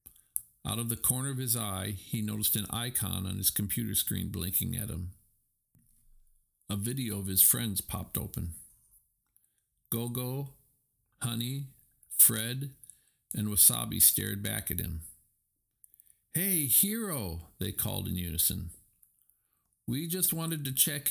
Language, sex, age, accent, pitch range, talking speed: English, male, 50-69, American, 100-125 Hz, 130 wpm